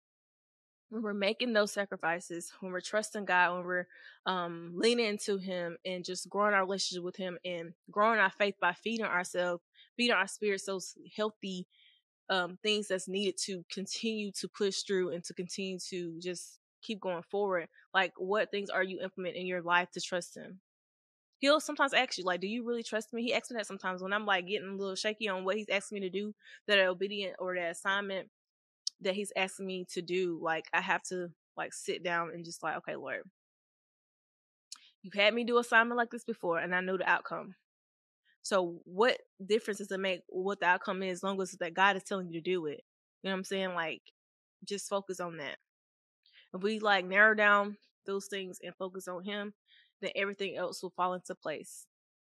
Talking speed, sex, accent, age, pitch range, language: 205 wpm, female, American, 20-39, 180-210 Hz, English